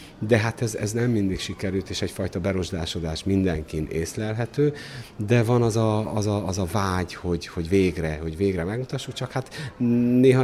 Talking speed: 145 wpm